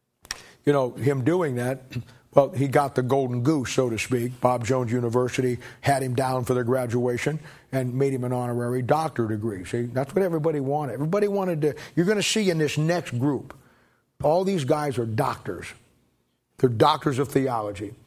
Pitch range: 125-145 Hz